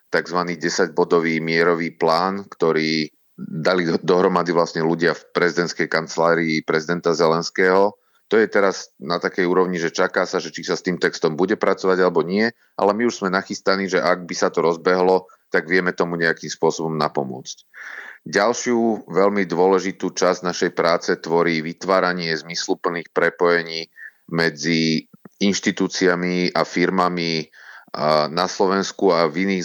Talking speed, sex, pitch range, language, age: 140 wpm, male, 80-95 Hz, Slovak, 30-49